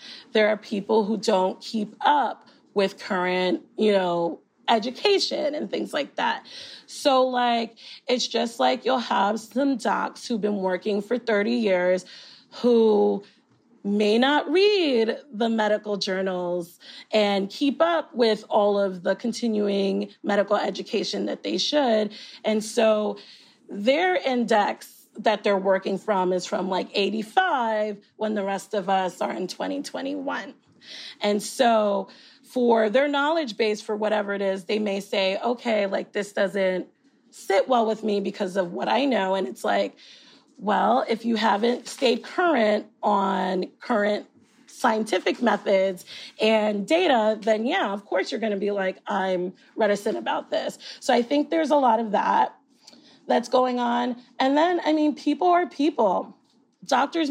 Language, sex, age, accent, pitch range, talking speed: English, female, 30-49, American, 200-255 Hz, 150 wpm